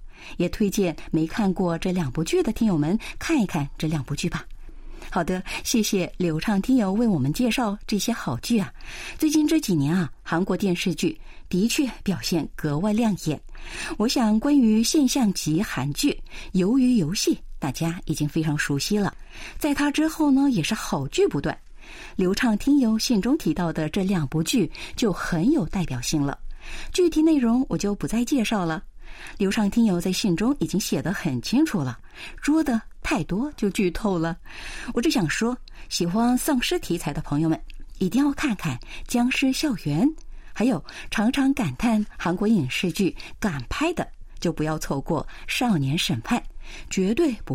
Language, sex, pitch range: Chinese, female, 165-245 Hz